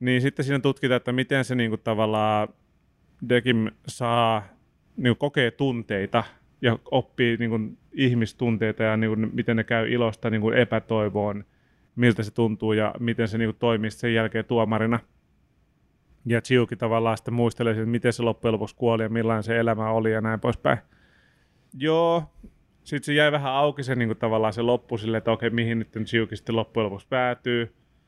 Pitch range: 110-125 Hz